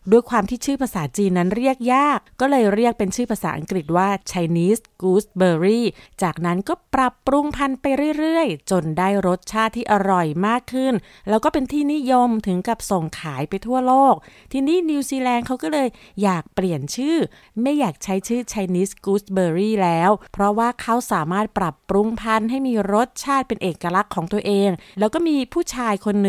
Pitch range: 190-250 Hz